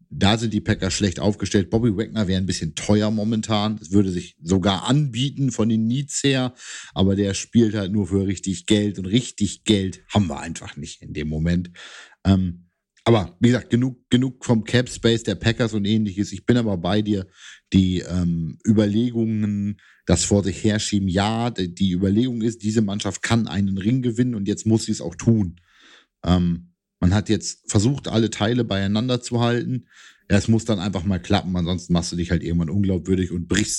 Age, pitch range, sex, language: 50-69, 95-120 Hz, male, German